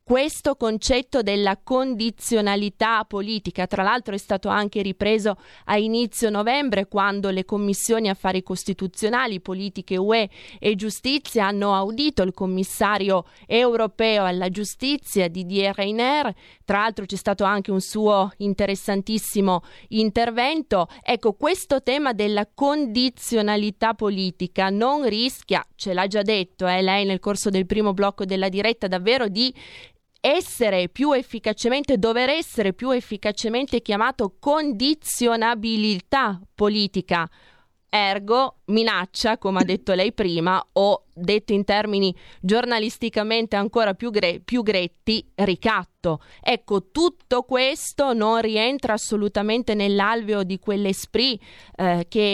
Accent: native